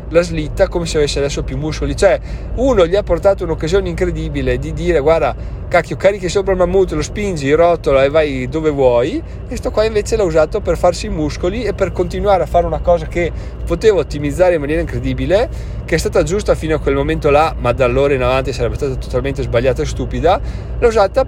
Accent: native